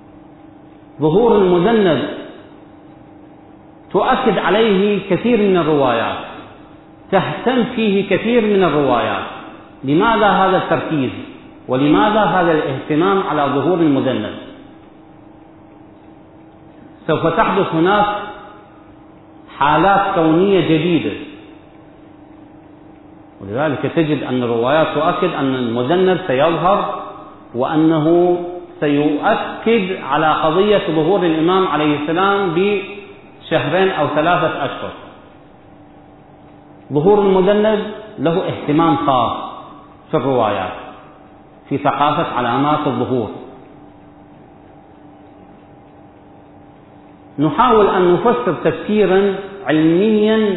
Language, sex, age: Arabic, male, 40-59